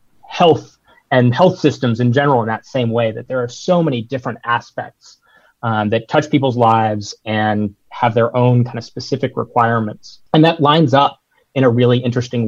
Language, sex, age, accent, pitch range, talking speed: English, male, 30-49, American, 115-130 Hz, 185 wpm